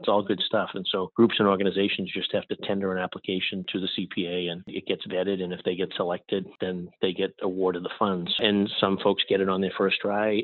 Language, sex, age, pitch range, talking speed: English, male, 40-59, 90-100 Hz, 235 wpm